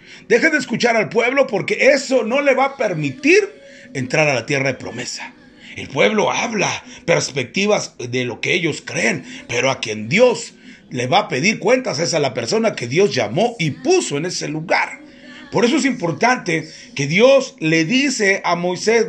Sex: male